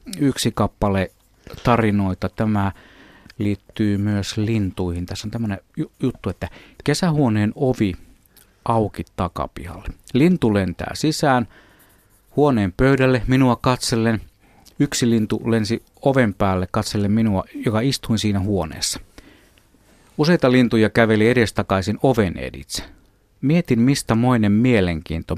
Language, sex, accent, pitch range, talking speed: Finnish, male, native, 90-120 Hz, 105 wpm